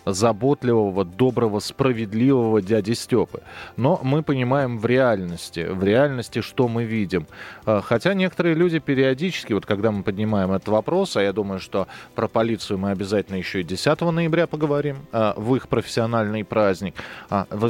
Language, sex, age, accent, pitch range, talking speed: Russian, male, 30-49, native, 100-150 Hz, 145 wpm